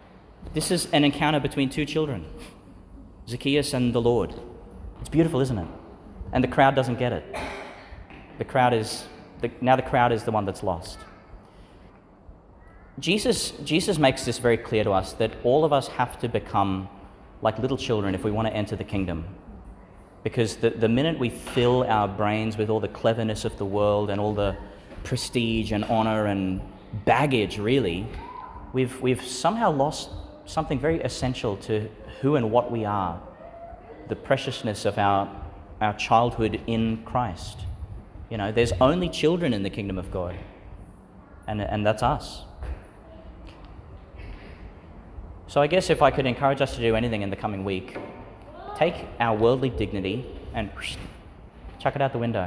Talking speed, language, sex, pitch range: 160 wpm, English, male, 95-125 Hz